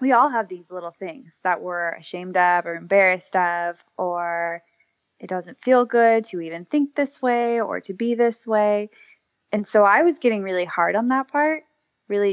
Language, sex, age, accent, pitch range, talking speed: English, female, 20-39, American, 185-230 Hz, 190 wpm